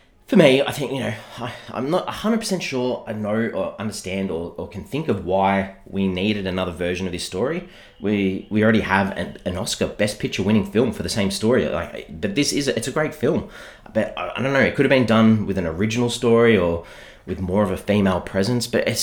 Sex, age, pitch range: male, 30-49, 95-115 Hz